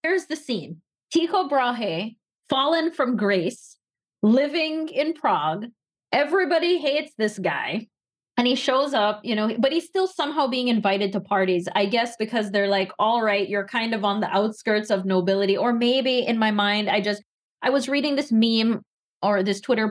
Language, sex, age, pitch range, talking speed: English, female, 20-39, 205-270 Hz, 180 wpm